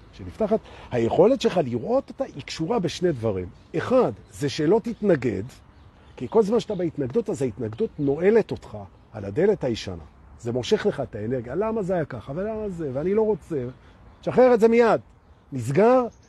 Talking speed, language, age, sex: 160 wpm, Hebrew, 40-59, male